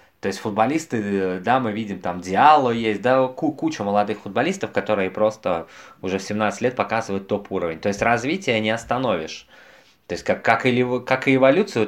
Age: 20-39